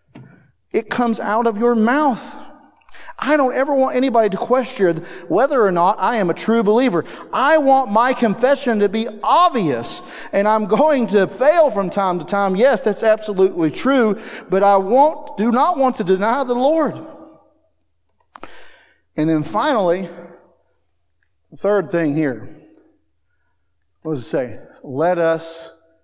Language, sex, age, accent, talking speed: English, male, 40-59, American, 145 wpm